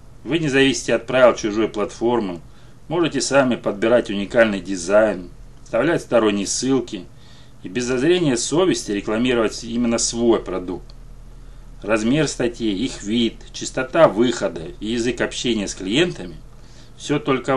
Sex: male